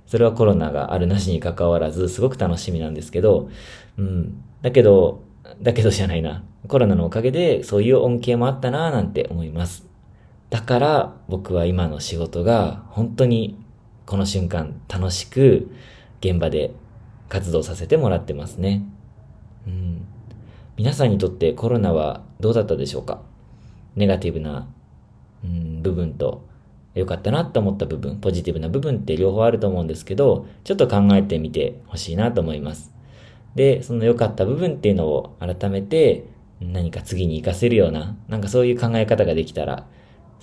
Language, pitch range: Japanese, 85-115 Hz